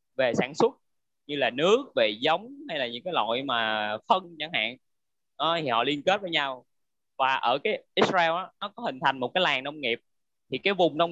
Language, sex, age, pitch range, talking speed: Vietnamese, male, 20-39, 130-185 Hz, 225 wpm